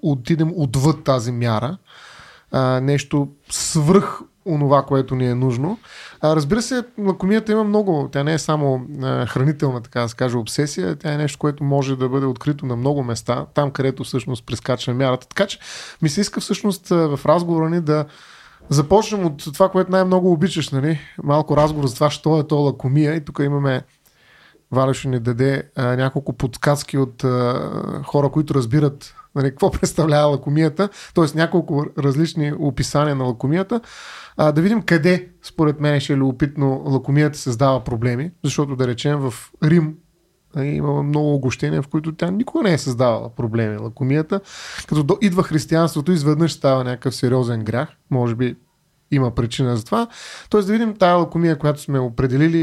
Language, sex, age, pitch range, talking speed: Bulgarian, male, 30-49, 135-165 Hz, 165 wpm